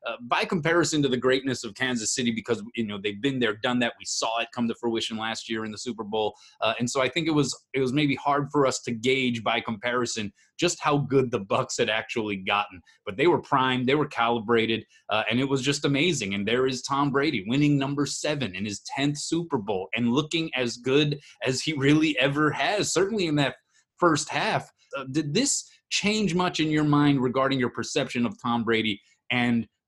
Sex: male